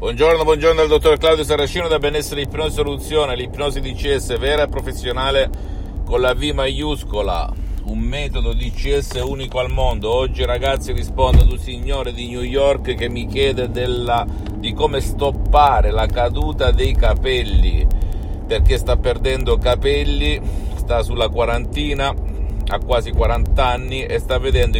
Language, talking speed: Italian, 145 wpm